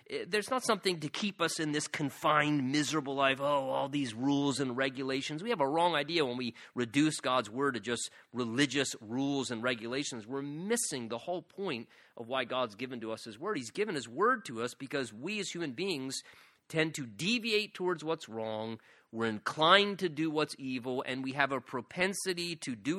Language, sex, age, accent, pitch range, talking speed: English, male, 30-49, American, 125-165 Hz, 200 wpm